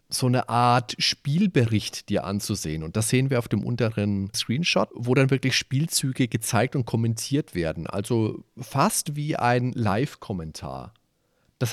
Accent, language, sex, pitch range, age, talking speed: German, German, male, 105-130 Hz, 40-59, 145 wpm